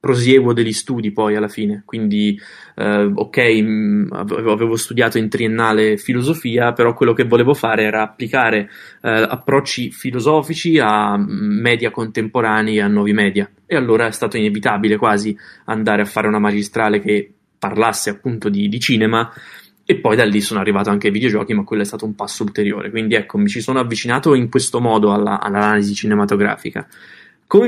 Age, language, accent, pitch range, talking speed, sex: 20-39, Italian, native, 110-140 Hz, 165 wpm, male